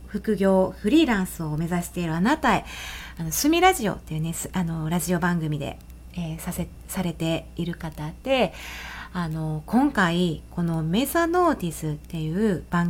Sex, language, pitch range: female, Japanese, 160-230 Hz